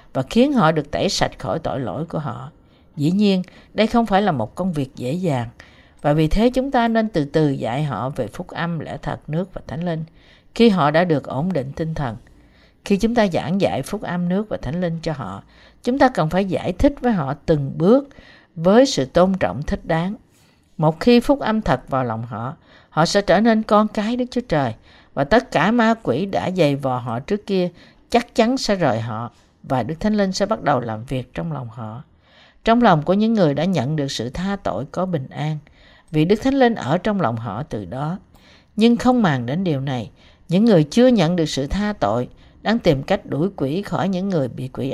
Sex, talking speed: female, 230 wpm